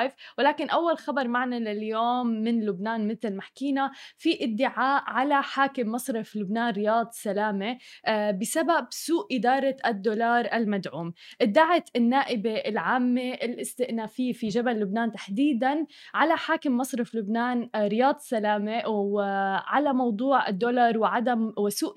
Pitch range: 215-255 Hz